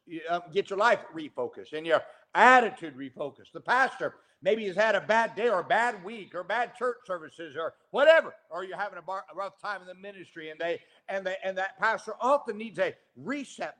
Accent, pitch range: American, 170-245 Hz